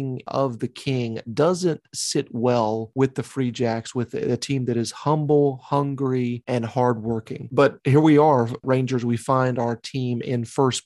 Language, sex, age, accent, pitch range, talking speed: English, male, 30-49, American, 120-145 Hz, 165 wpm